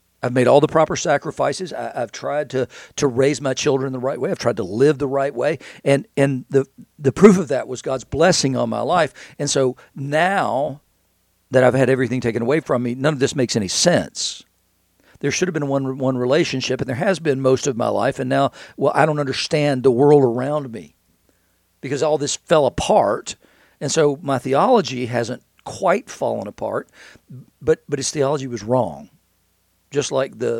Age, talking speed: 50-69, 200 wpm